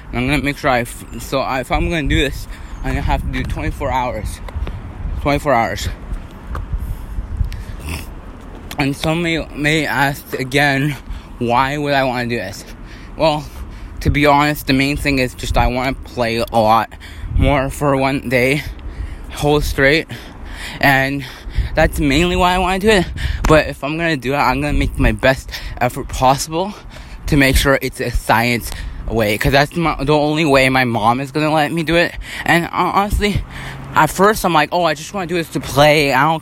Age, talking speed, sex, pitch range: 20-39, 200 wpm, male, 100-150 Hz